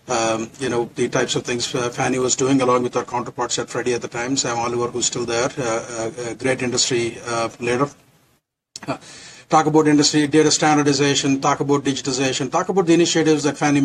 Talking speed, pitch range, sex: 205 wpm, 120-145 Hz, male